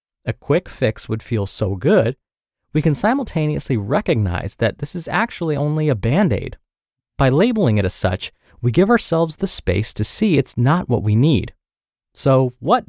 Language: English